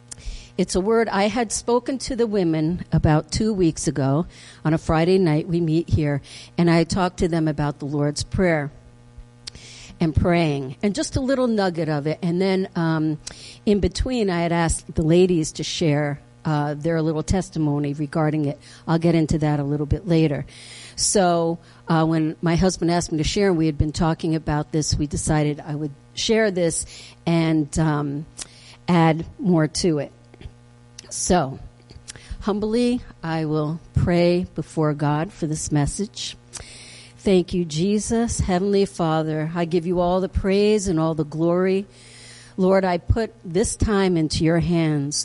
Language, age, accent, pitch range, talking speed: English, 50-69, American, 145-180 Hz, 165 wpm